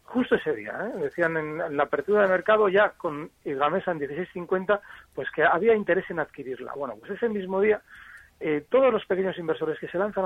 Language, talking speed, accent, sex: Spanish, 205 wpm, Spanish, male